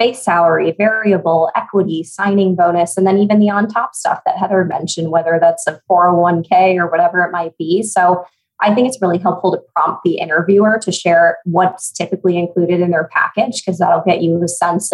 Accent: American